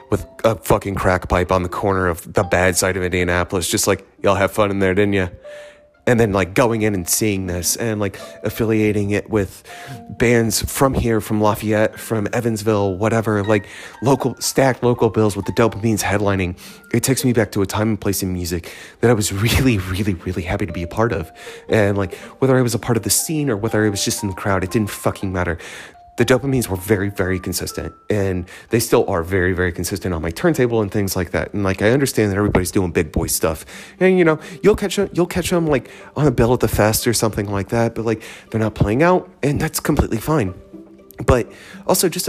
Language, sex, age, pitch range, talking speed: English, male, 30-49, 100-130 Hz, 230 wpm